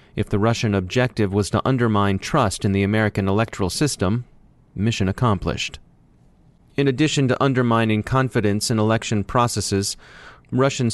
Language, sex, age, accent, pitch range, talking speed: English, male, 30-49, American, 100-125 Hz, 130 wpm